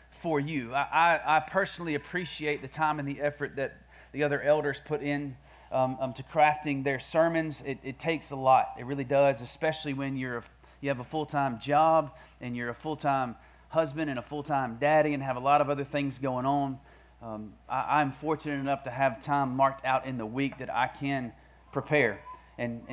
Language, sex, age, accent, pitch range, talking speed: English, male, 30-49, American, 130-150 Hz, 195 wpm